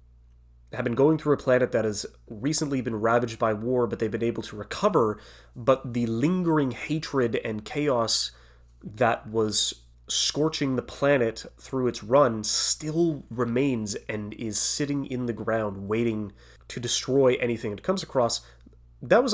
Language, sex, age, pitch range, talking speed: English, male, 30-49, 110-150 Hz, 155 wpm